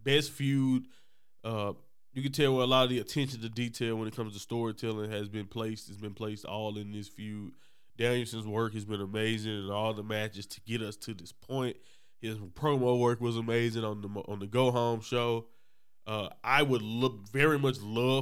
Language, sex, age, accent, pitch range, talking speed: English, male, 20-39, American, 110-130 Hz, 210 wpm